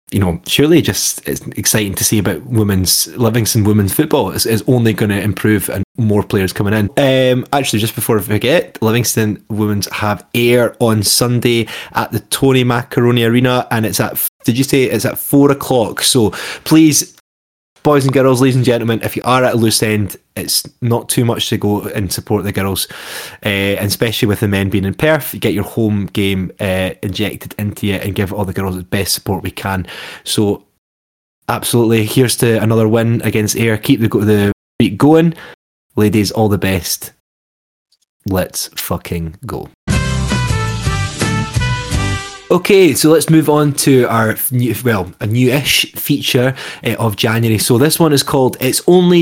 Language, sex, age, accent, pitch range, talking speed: English, male, 20-39, British, 100-130 Hz, 175 wpm